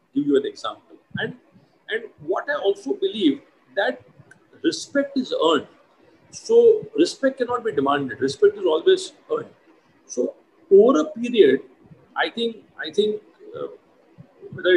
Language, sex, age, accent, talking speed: English, male, 50-69, Indian, 130 wpm